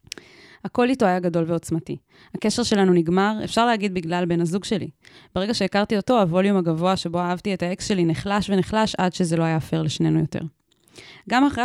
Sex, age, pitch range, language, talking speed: female, 20-39, 170-205 Hz, Hebrew, 180 wpm